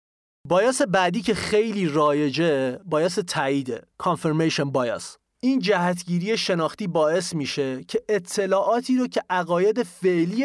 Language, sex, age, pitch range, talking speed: English, male, 30-49, 160-205 Hz, 115 wpm